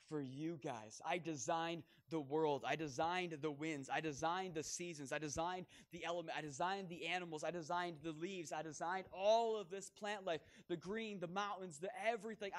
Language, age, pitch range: English, 20-39, 130-170 Hz